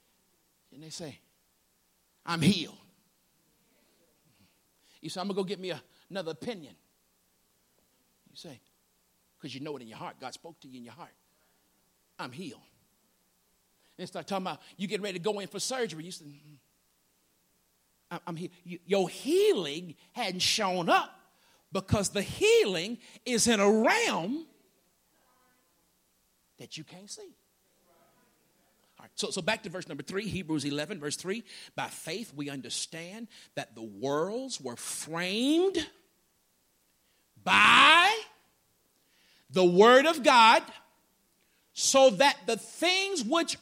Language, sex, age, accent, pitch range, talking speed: English, male, 50-69, American, 150-250 Hz, 130 wpm